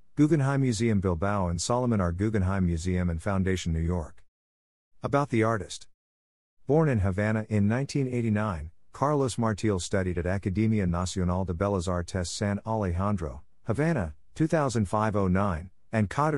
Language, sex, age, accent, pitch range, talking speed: English, male, 50-69, American, 90-120 Hz, 120 wpm